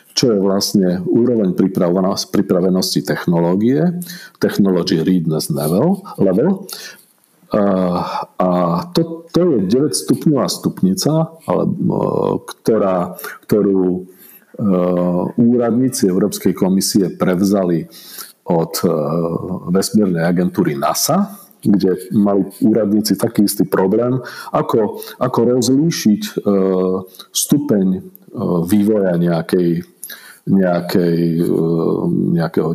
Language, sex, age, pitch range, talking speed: Slovak, male, 50-69, 90-140 Hz, 75 wpm